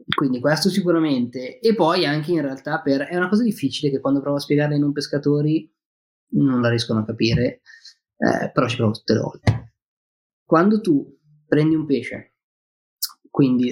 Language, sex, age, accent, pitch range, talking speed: Italian, male, 20-39, native, 120-150 Hz, 170 wpm